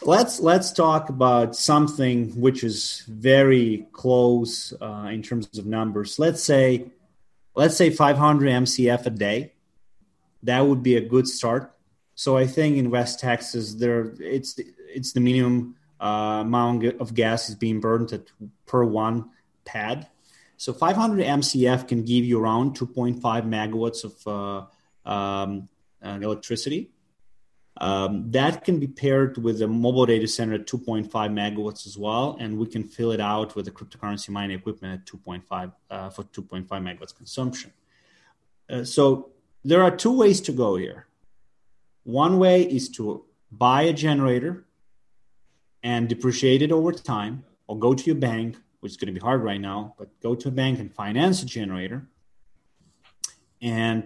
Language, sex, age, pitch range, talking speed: English, male, 30-49, 105-130 Hz, 155 wpm